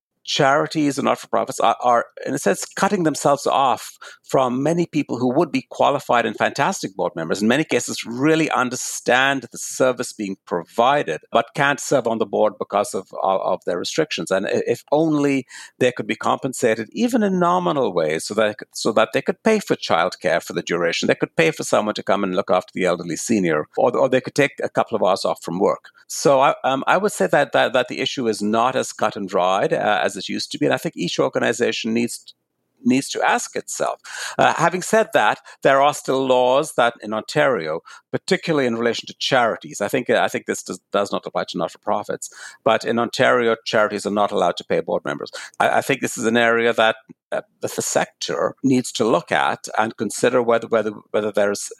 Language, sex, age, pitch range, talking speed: English, male, 60-79, 110-155 Hz, 215 wpm